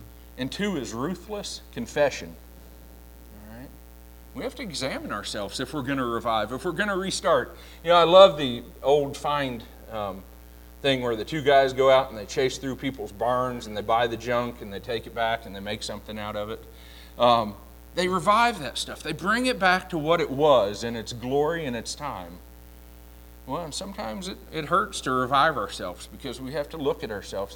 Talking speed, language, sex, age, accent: 200 wpm, English, male, 40-59, American